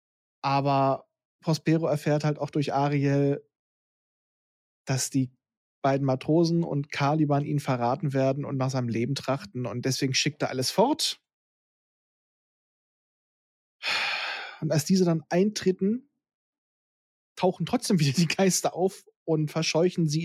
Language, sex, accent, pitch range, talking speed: German, male, German, 140-165 Hz, 120 wpm